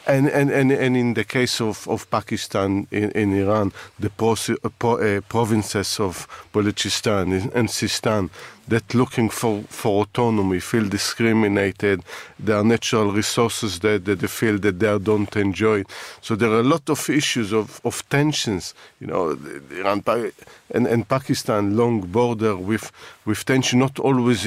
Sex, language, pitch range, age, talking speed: male, English, 105-125 Hz, 50-69, 160 wpm